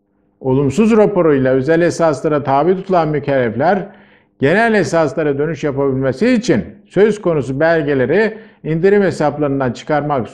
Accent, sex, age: native, male, 50-69